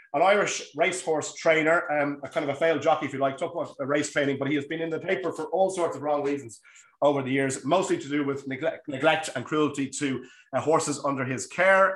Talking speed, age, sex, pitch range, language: 240 wpm, 30-49, male, 130-160 Hz, English